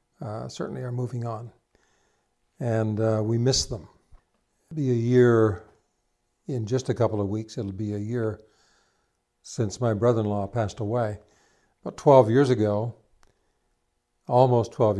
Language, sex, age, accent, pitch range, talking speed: English, male, 60-79, American, 110-125 Hz, 140 wpm